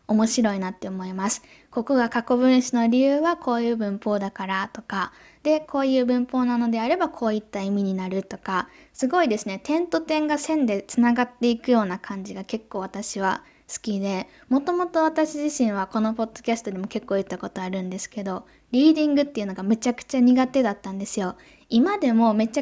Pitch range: 205-265 Hz